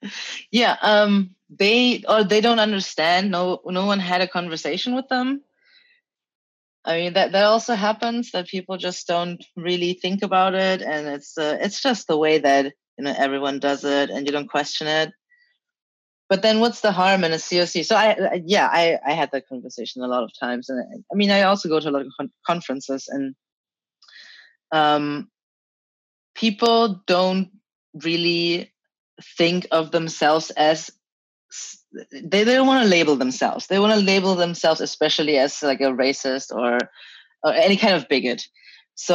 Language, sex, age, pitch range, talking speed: English, female, 20-39, 155-205 Hz, 175 wpm